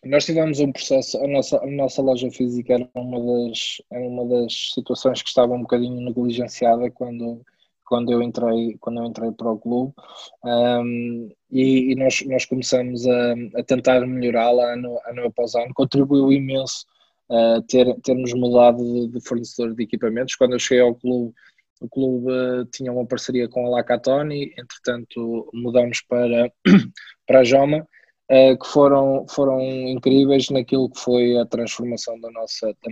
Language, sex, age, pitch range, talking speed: Portuguese, male, 20-39, 120-135 Hz, 160 wpm